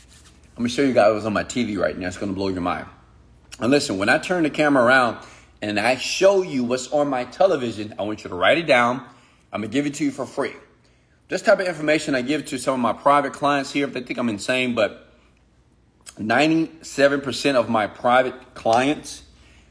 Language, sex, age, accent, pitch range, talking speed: English, male, 30-49, American, 90-140 Hz, 220 wpm